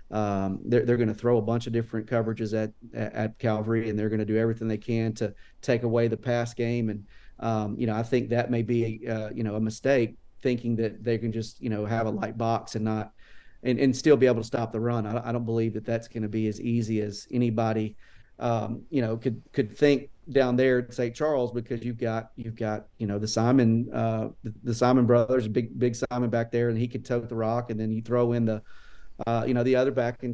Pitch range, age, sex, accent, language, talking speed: 110-120 Hz, 40-59, male, American, English, 245 wpm